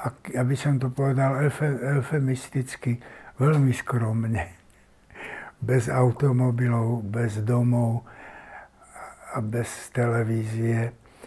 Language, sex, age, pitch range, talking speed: Slovak, male, 60-79, 115-135 Hz, 75 wpm